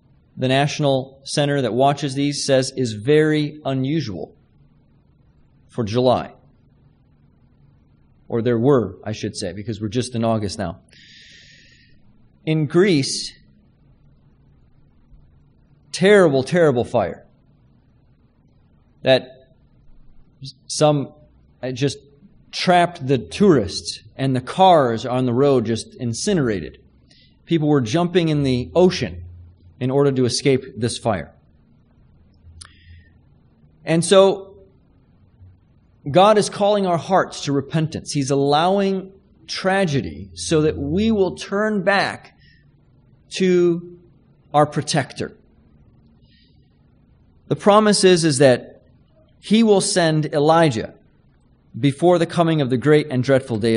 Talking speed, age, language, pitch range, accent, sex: 105 wpm, 40-59, English, 120-170 Hz, American, male